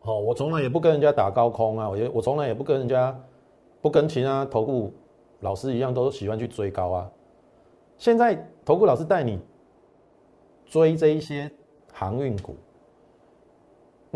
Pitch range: 105-155 Hz